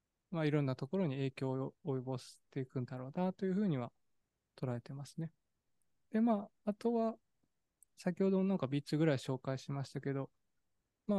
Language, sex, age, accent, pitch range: Japanese, male, 20-39, native, 130-180 Hz